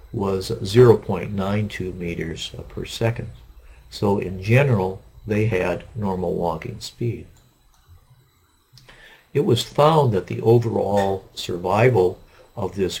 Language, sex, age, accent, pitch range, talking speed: English, male, 50-69, American, 90-120 Hz, 100 wpm